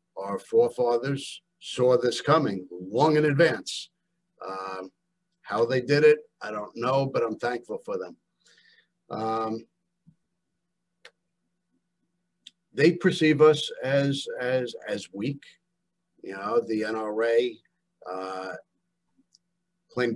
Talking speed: 105 wpm